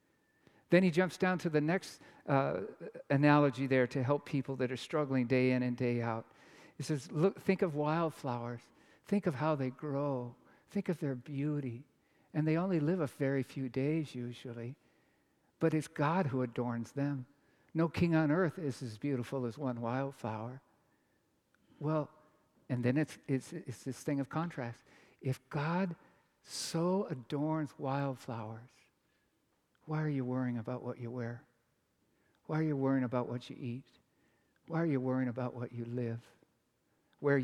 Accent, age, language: American, 60-79, English